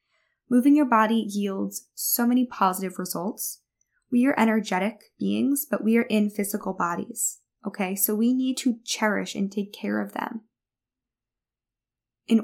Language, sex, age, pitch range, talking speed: English, female, 10-29, 200-265 Hz, 145 wpm